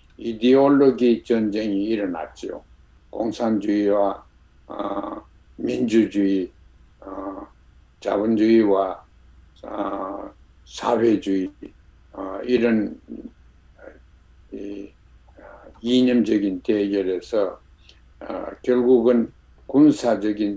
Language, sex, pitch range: Korean, male, 100-120 Hz